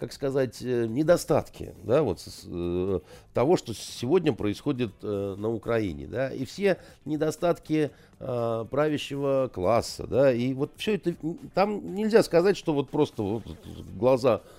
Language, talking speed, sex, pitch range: Russian, 110 wpm, male, 110-160 Hz